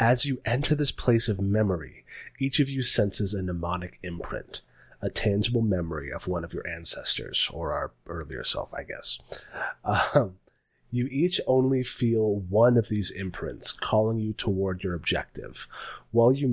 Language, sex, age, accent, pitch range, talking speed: English, male, 30-49, American, 90-120 Hz, 160 wpm